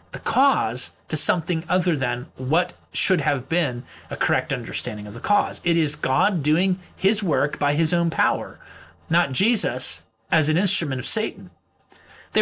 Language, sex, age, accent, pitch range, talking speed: English, male, 30-49, American, 140-200 Hz, 165 wpm